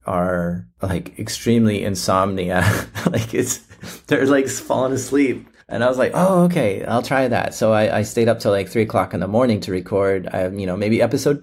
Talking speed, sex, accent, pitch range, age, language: 200 wpm, male, American, 95-115 Hz, 30-49, English